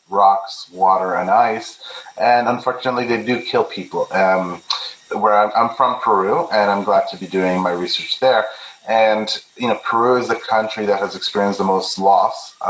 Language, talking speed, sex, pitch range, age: English, 180 wpm, male, 95-115 Hz, 30-49